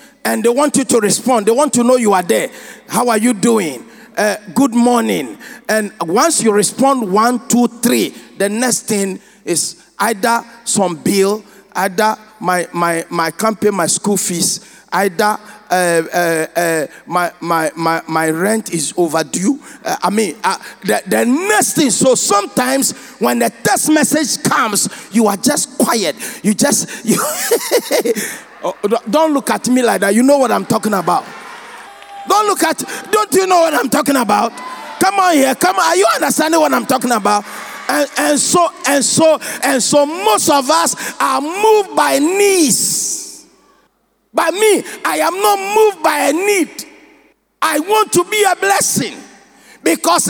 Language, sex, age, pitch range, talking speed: English, male, 50-69, 210-315 Hz, 165 wpm